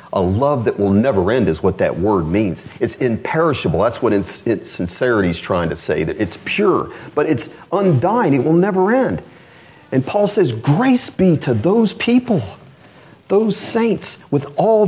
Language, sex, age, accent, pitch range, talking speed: English, male, 40-59, American, 110-160 Hz, 180 wpm